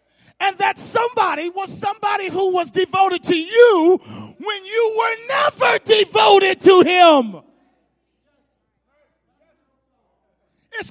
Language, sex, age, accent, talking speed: English, male, 40-59, American, 100 wpm